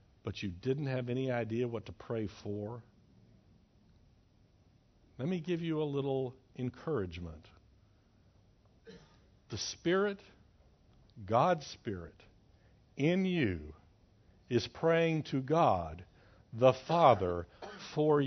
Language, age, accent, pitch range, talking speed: English, 60-79, American, 95-125 Hz, 100 wpm